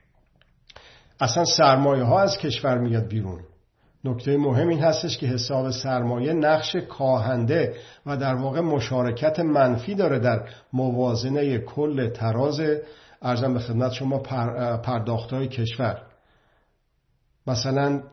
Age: 50-69